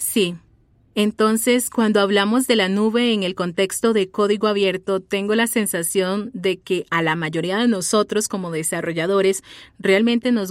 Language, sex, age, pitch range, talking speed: Spanish, female, 30-49, 185-220 Hz, 155 wpm